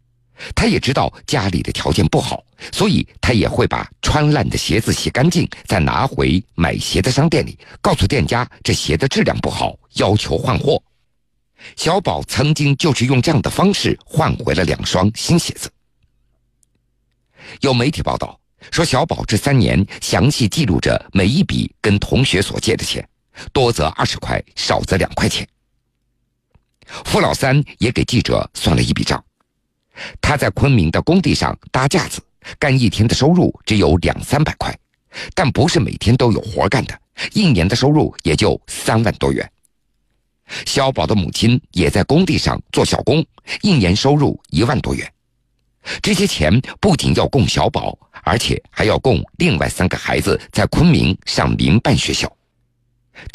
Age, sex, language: 50-69, male, Chinese